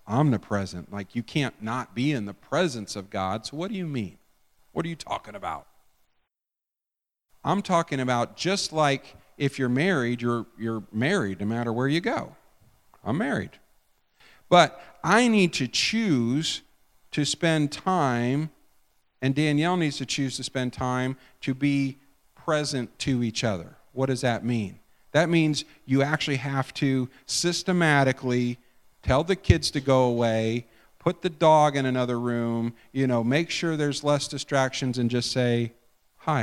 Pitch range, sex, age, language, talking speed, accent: 120-160 Hz, male, 50-69, English, 155 wpm, American